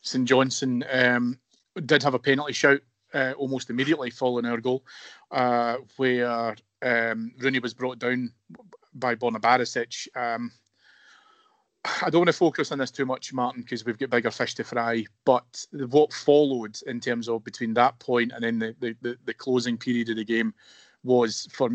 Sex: male